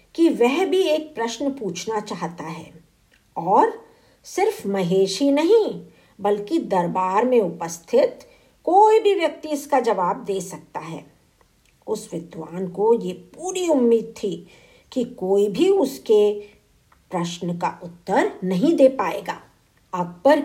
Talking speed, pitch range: 125 wpm, 190-300 Hz